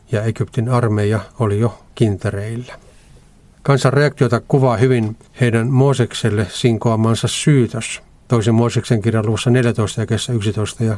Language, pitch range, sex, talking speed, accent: Finnish, 110-130 Hz, male, 120 wpm, native